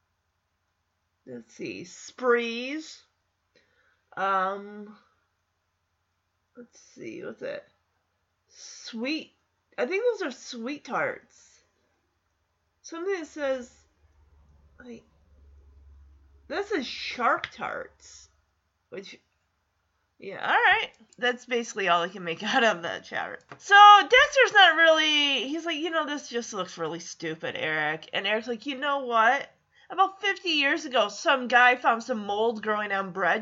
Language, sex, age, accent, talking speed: English, female, 30-49, American, 120 wpm